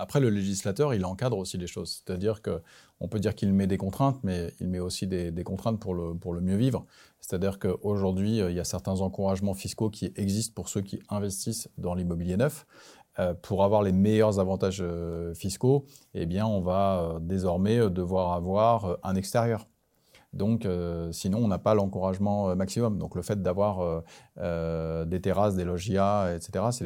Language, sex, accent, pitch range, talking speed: French, male, French, 95-110 Hz, 180 wpm